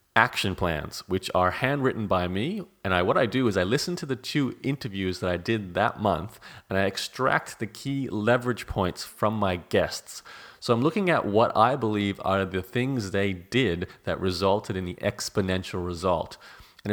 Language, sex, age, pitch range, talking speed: English, male, 30-49, 90-115 Hz, 190 wpm